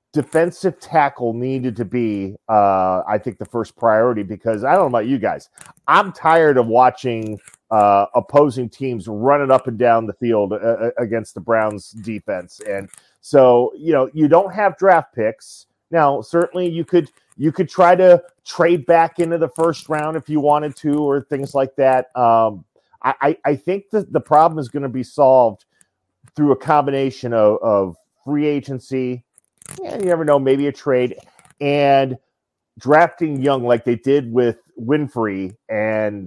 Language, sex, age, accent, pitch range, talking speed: English, male, 40-59, American, 110-150 Hz, 170 wpm